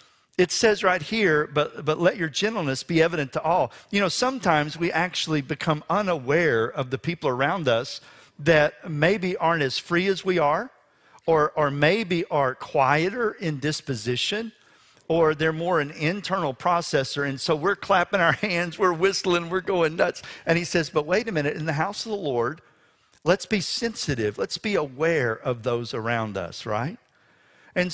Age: 50-69